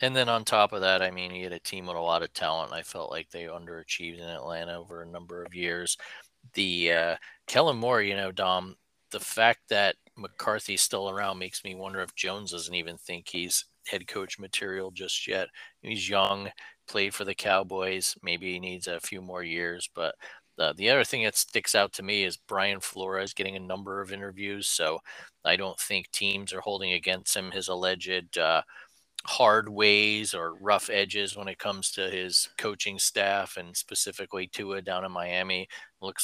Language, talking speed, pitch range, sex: English, 195 wpm, 90-100 Hz, male